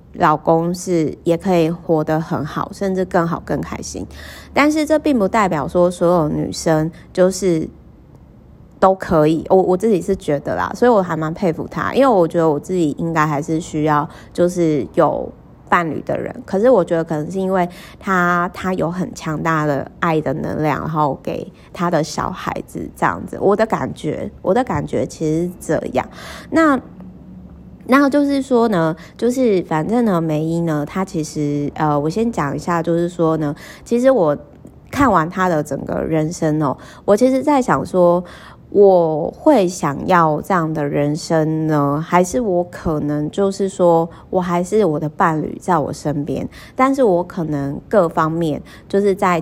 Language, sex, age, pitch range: Chinese, female, 20-39, 155-190 Hz